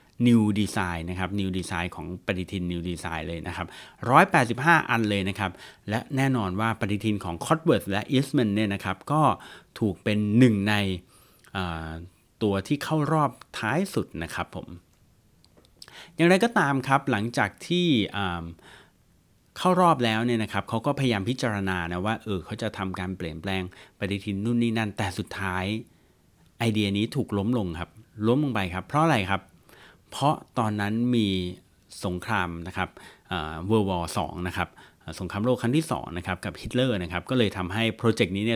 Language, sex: Thai, male